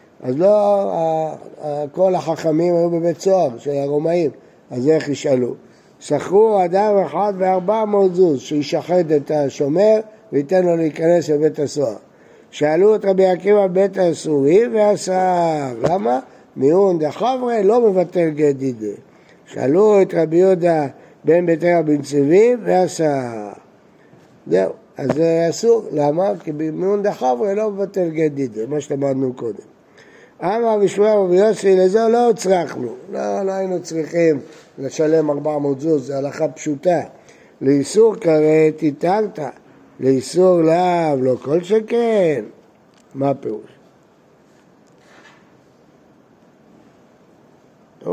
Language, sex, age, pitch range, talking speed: Hebrew, male, 60-79, 150-205 Hz, 120 wpm